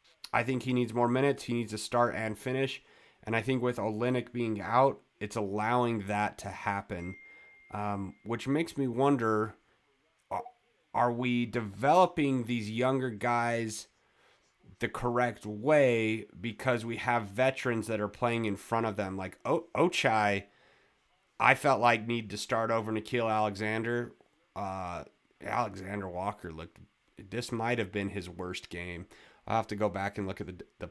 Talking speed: 155 wpm